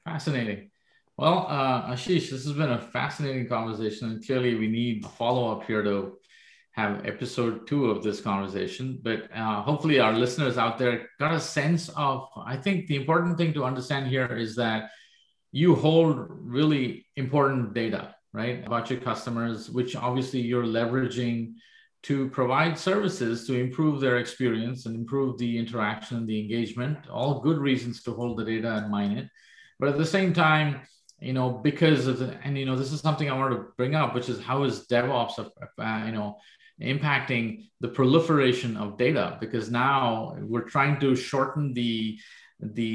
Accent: Indian